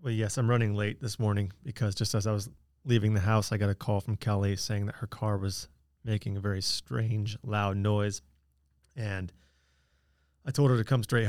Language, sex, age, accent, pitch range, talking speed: English, male, 30-49, American, 100-115 Hz, 205 wpm